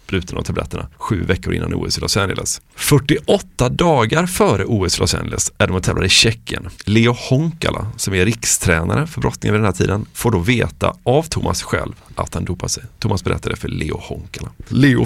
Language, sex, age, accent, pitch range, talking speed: Swedish, male, 30-49, native, 95-125 Hz, 185 wpm